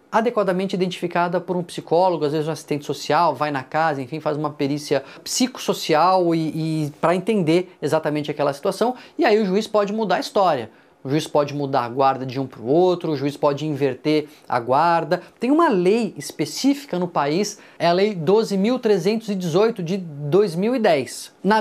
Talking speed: 175 wpm